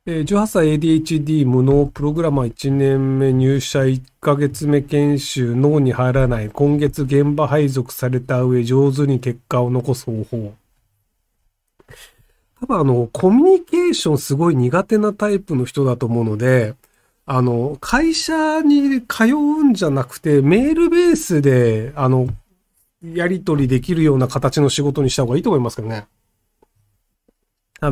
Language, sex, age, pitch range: Japanese, male, 40-59, 125-180 Hz